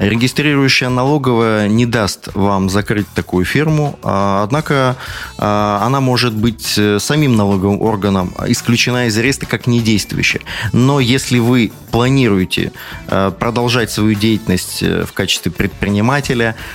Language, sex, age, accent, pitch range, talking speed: Russian, male, 20-39, native, 100-125 Hz, 110 wpm